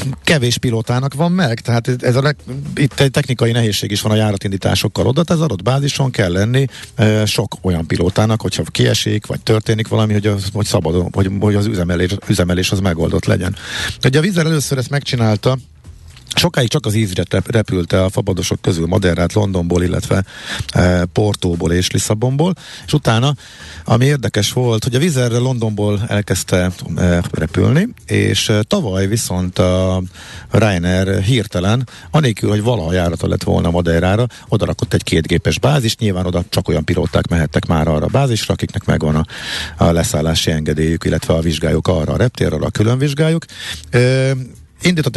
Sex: male